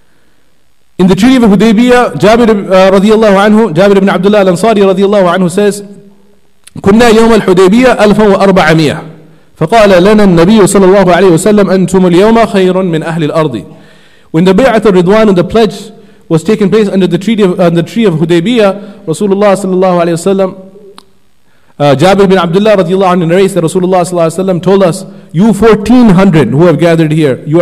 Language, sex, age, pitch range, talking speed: English, male, 40-59, 175-215 Hz, 115 wpm